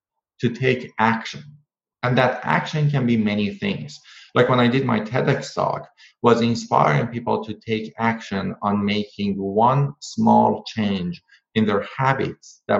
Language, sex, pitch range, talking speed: English, male, 110-140 Hz, 150 wpm